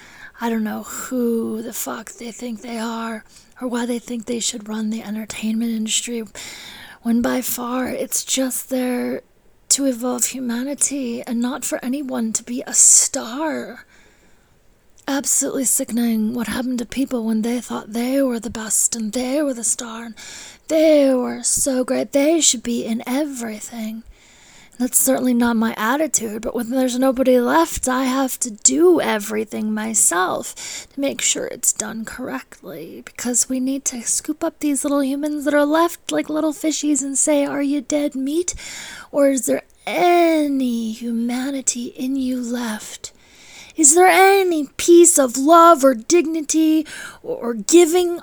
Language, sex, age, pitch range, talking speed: English, female, 20-39, 235-295 Hz, 155 wpm